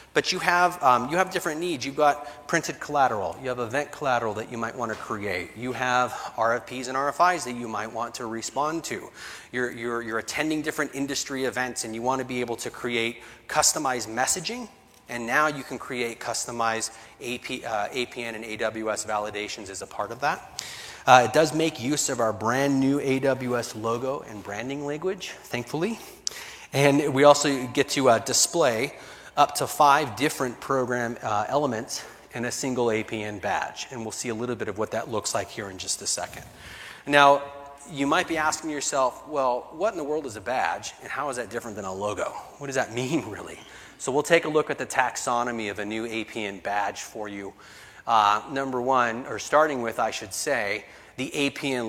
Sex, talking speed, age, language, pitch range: male, 195 wpm, 30-49, English, 115-145 Hz